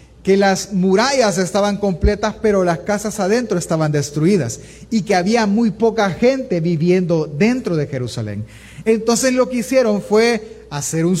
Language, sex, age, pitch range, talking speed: Spanish, male, 40-59, 160-220 Hz, 150 wpm